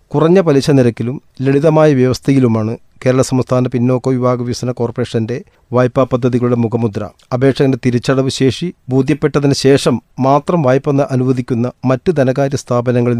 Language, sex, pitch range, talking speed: Malayalam, male, 120-140 Hz, 115 wpm